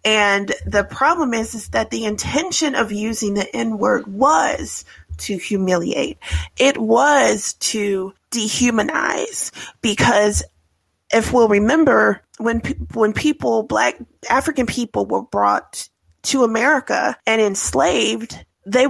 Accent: American